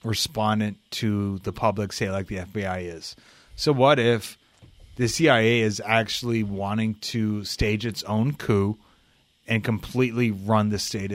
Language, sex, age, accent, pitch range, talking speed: English, male, 30-49, American, 105-120 Hz, 145 wpm